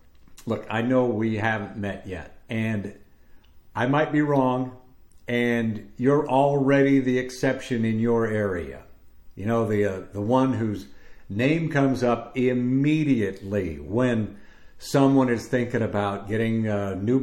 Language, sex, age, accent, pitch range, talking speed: English, male, 50-69, American, 105-135 Hz, 135 wpm